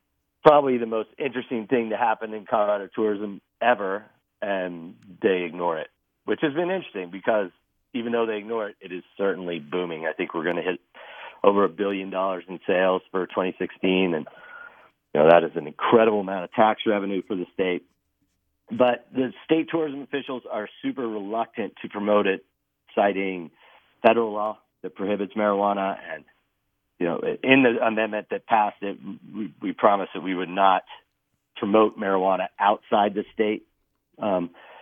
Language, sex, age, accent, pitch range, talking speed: English, male, 40-59, American, 95-115 Hz, 165 wpm